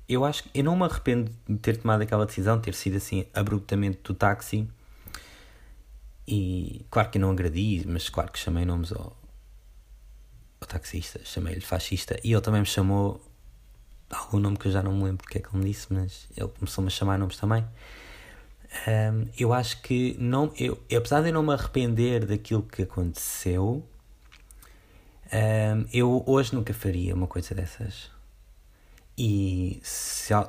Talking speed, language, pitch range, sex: 165 wpm, Portuguese, 95-115 Hz, male